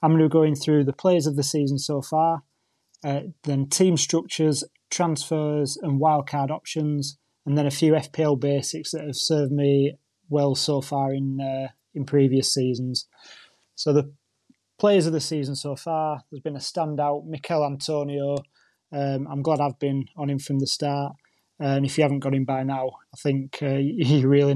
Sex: male